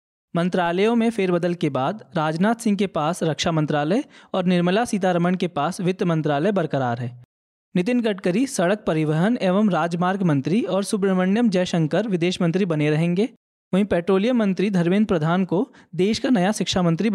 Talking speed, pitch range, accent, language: 160 wpm, 165-205 Hz, native, Hindi